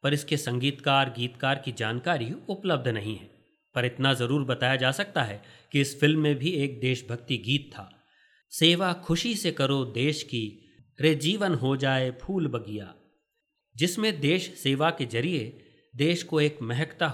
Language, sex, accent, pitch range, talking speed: Hindi, male, native, 125-160 Hz, 160 wpm